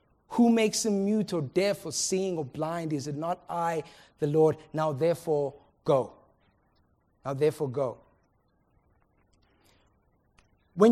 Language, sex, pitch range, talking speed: English, male, 170-270 Hz, 125 wpm